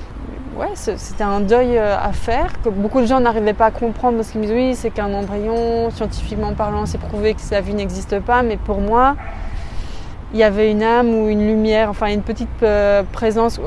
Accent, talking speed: French, 200 wpm